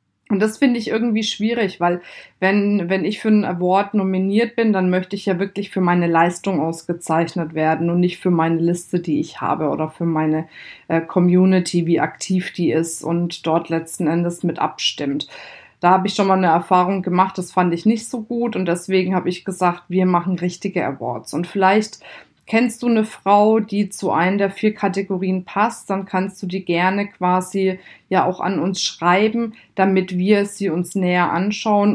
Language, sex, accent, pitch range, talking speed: German, female, German, 175-205 Hz, 190 wpm